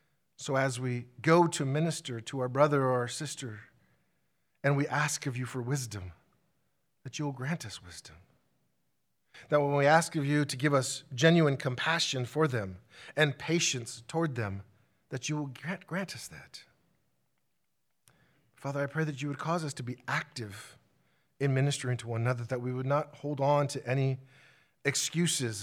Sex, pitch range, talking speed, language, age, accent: male, 115-145 Hz, 175 wpm, English, 40-59, American